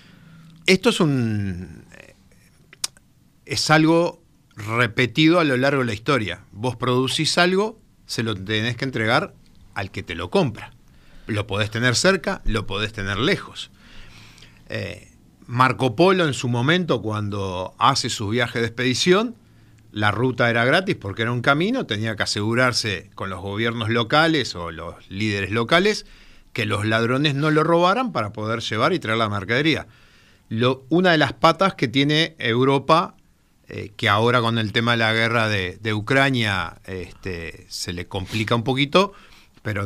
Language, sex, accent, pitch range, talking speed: Spanish, male, Argentinian, 105-140 Hz, 155 wpm